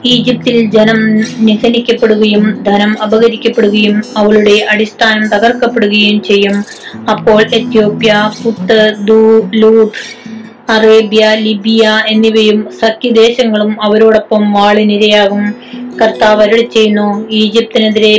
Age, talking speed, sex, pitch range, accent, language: 20-39, 65 wpm, female, 210-225 Hz, native, Malayalam